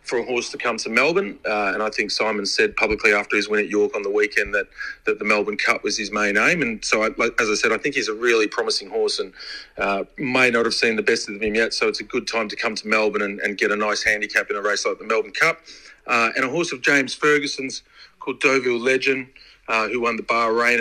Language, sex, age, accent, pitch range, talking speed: English, male, 30-49, Australian, 110-145 Hz, 270 wpm